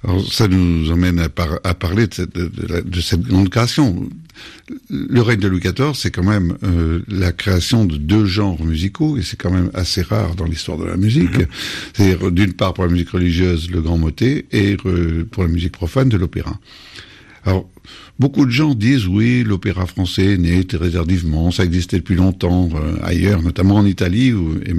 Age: 60-79